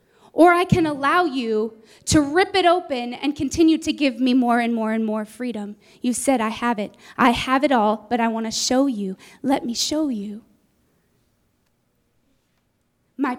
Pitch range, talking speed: 235-310 Hz, 180 wpm